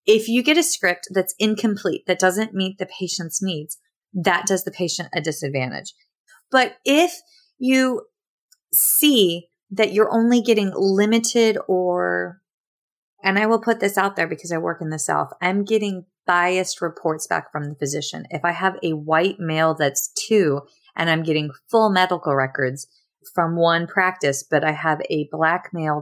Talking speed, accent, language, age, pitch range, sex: 170 wpm, American, English, 30-49, 160-215 Hz, female